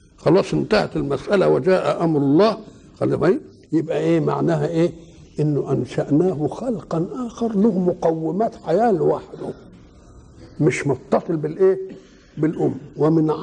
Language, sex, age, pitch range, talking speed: Arabic, male, 60-79, 155-210 Hz, 105 wpm